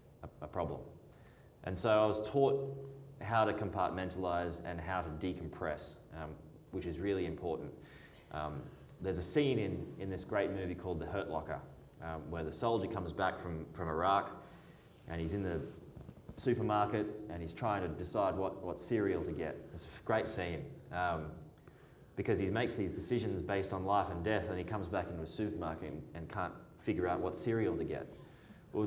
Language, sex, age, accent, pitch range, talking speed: English, male, 20-39, Australian, 85-105 Hz, 185 wpm